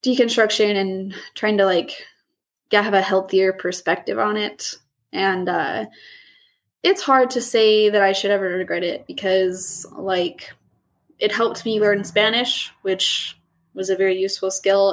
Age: 20-39